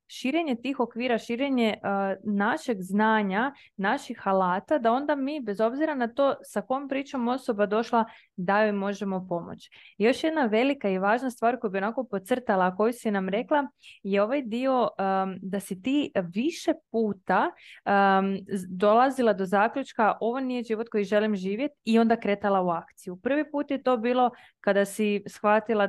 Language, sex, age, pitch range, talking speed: Croatian, female, 20-39, 200-255 Hz, 165 wpm